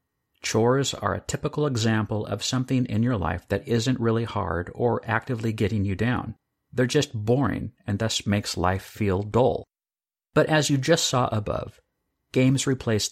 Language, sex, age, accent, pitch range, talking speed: English, male, 50-69, American, 100-130 Hz, 165 wpm